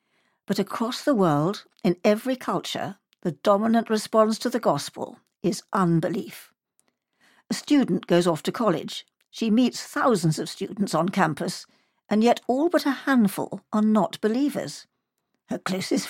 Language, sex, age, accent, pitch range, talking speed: English, female, 60-79, British, 190-260 Hz, 145 wpm